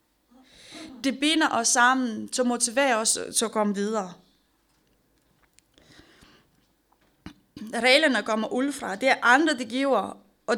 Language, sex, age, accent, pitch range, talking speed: Danish, female, 30-49, native, 230-280 Hz, 120 wpm